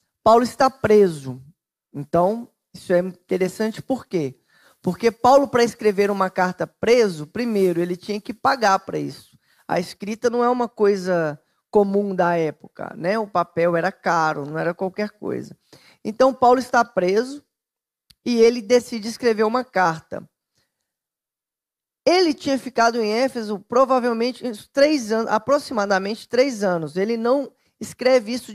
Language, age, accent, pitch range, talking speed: Portuguese, 20-39, Brazilian, 185-240 Hz, 140 wpm